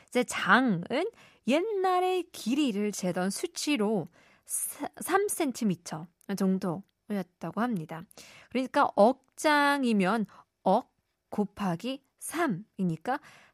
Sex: female